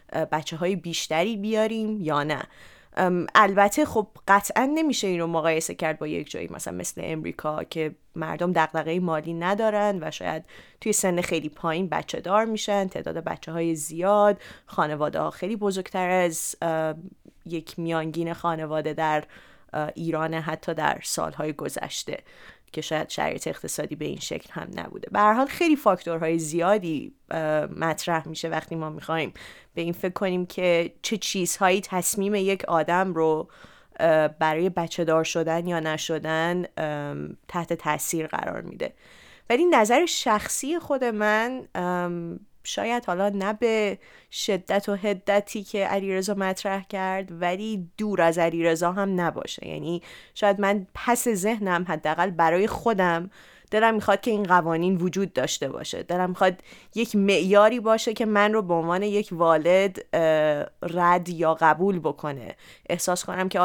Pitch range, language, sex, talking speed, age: 160-200 Hz, Persian, female, 140 wpm, 30-49